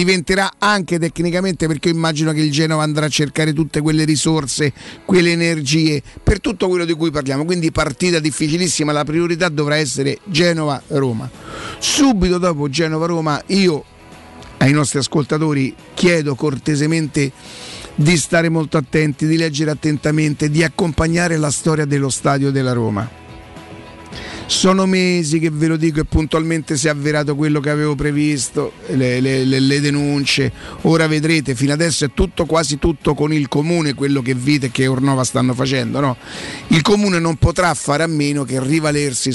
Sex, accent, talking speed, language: male, native, 155 wpm, Italian